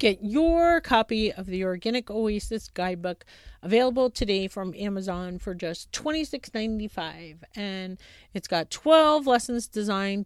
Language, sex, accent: English, female, American